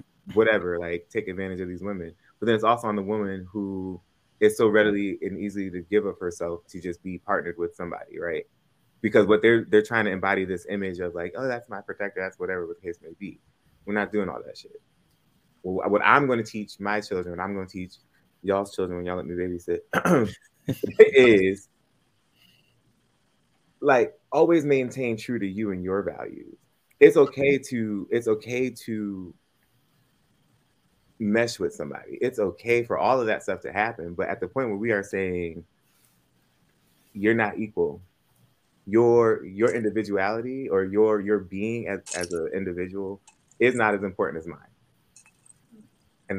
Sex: male